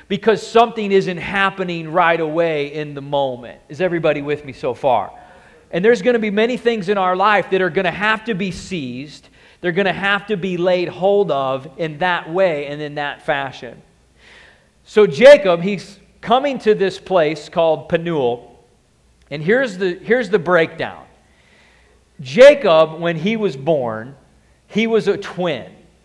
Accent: American